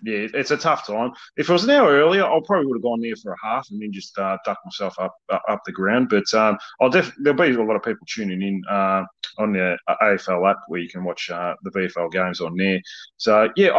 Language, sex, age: English, male, 30-49